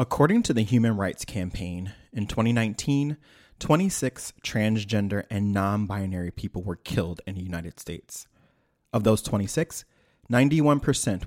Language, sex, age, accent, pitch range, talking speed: English, male, 30-49, American, 100-130 Hz, 120 wpm